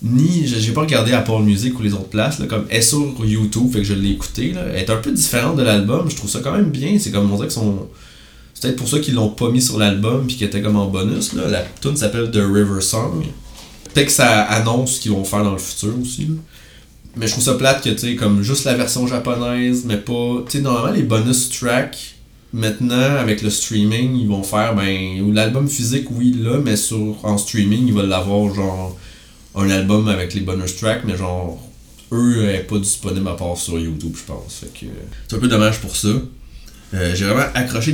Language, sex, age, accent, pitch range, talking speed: French, male, 20-39, Canadian, 100-125 Hz, 235 wpm